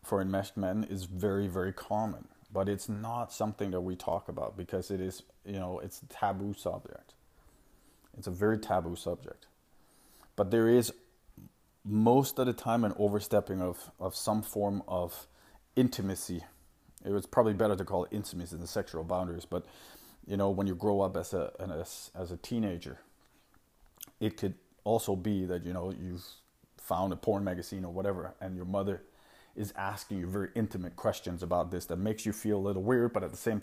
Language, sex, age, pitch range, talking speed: English, male, 30-49, 90-105 Hz, 185 wpm